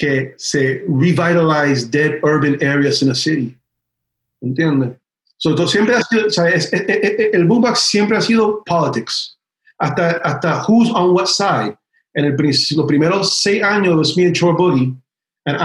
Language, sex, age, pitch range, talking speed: English, male, 40-59, 140-175 Hz, 165 wpm